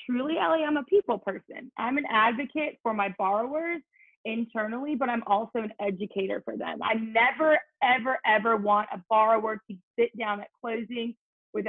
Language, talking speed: English, 170 wpm